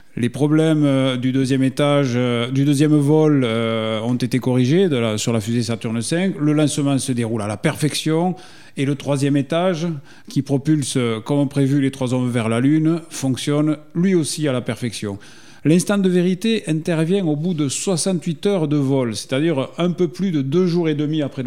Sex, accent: male, French